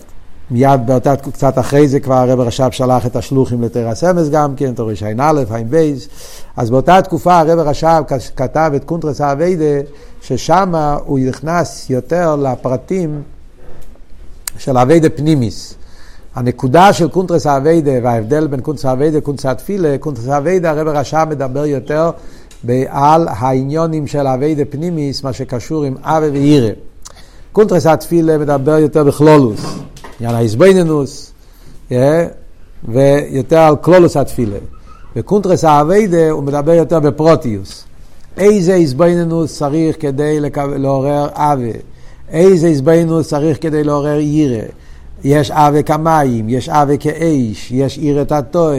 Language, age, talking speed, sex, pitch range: Hebrew, 50-69, 100 wpm, male, 130-155 Hz